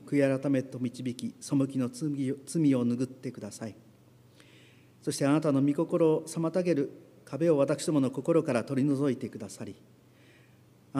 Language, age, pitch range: Japanese, 40-59, 125-145 Hz